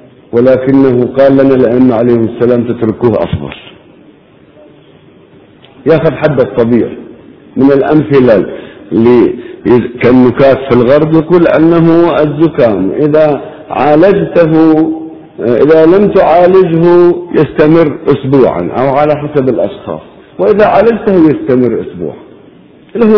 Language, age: Arabic, 50-69